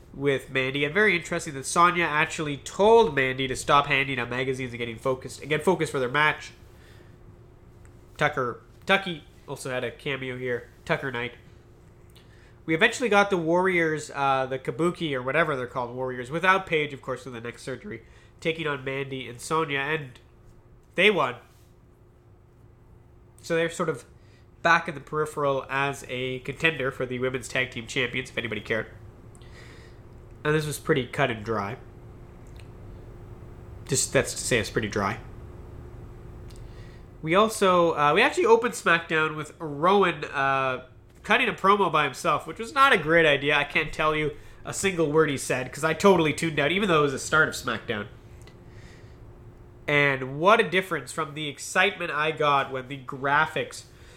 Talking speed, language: 165 wpm, English